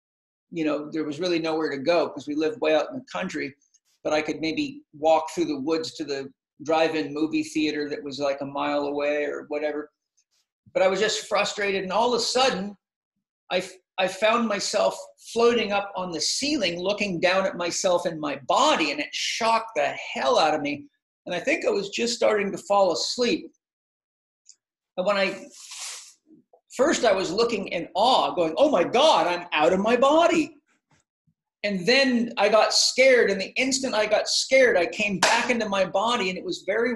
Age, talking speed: 50-69, 195 wpm